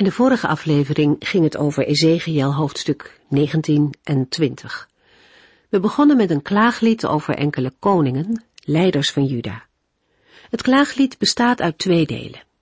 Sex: female